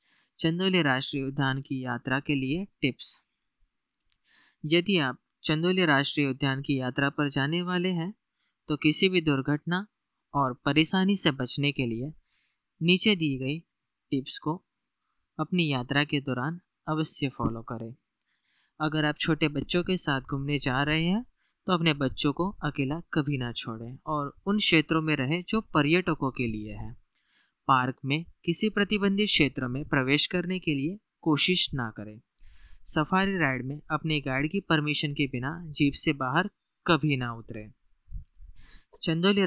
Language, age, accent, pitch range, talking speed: Hindi, 20-39, native, 130-170 Hz, 150 wpm